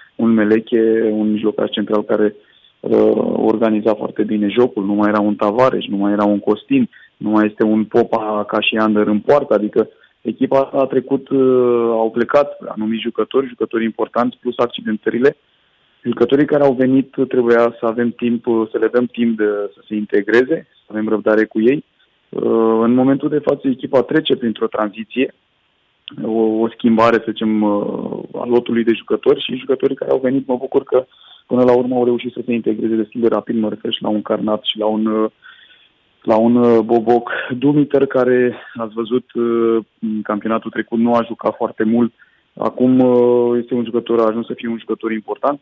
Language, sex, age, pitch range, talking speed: Romanian, male, 20-39, 110-125 Hz, 175 wpm